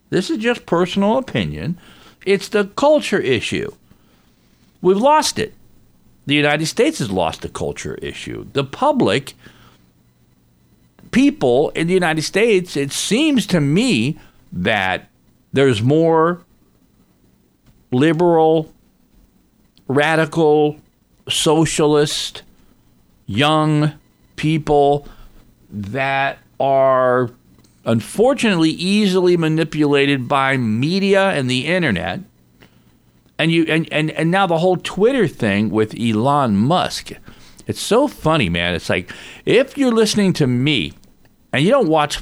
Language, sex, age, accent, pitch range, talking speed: English, male, 50-69, American, 125-195 Hz, 110 wpm